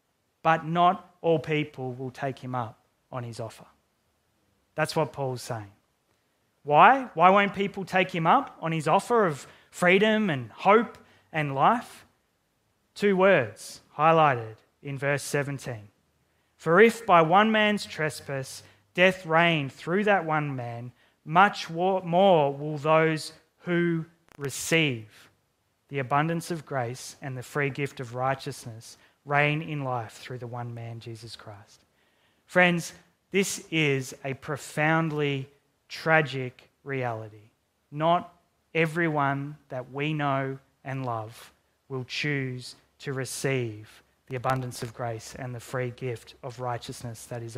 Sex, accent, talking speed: male, Australian, 130 wpm